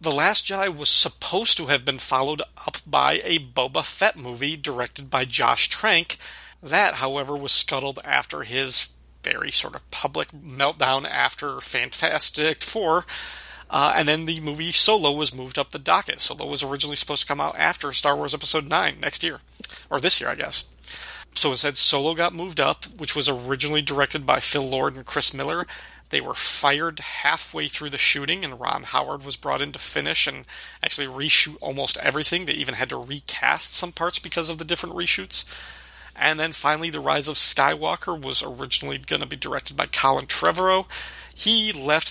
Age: 40-59